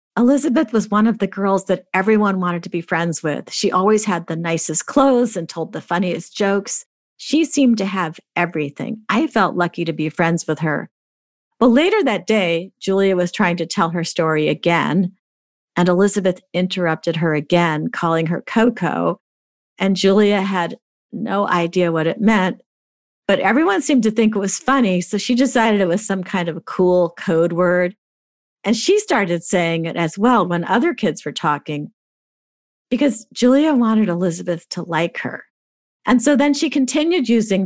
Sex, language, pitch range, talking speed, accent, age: female, English, 170-220 Hz, 175 wpm, American, 50-69